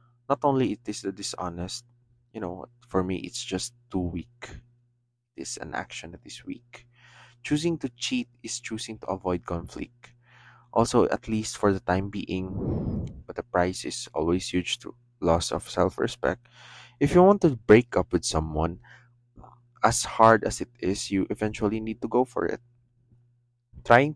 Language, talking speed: English, 165 wpm